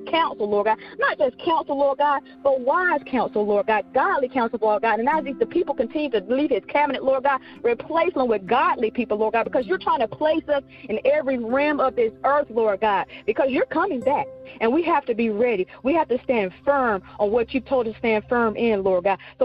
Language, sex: English, female